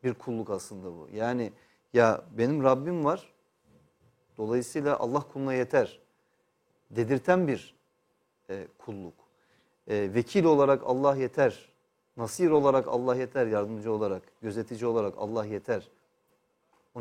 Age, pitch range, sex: 40-59, 120-150 Hz, male